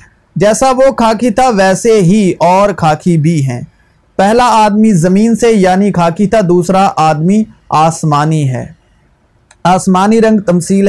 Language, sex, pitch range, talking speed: Urdu, male, 170-220 Hz, 130 wpm